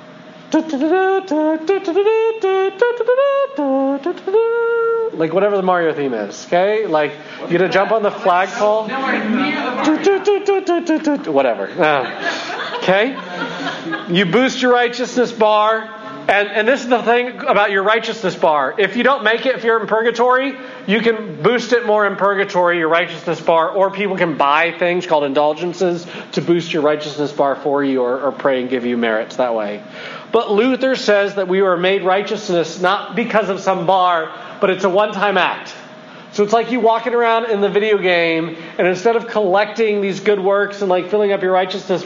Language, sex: English, male